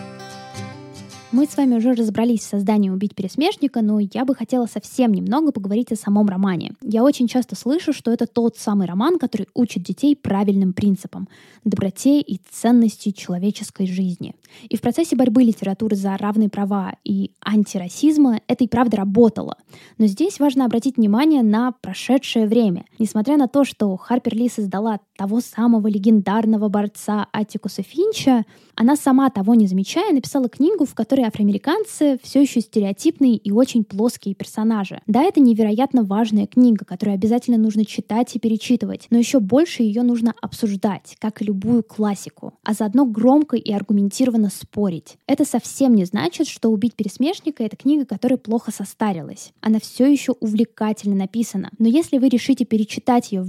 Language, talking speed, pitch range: Russian, 160 wpm, 205-250 Hz